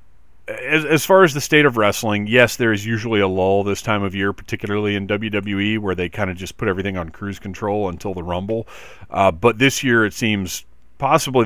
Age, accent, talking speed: 40-59, American, 210 wpm